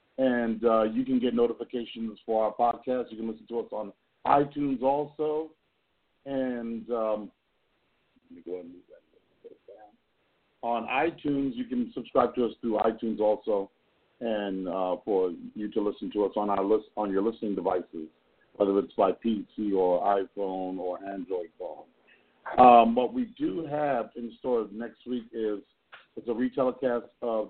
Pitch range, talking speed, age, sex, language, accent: 105-130 Hz, 165 wpm, 50-69, male, English, American